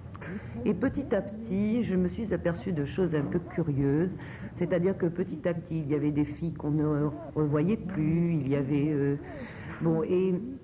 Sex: female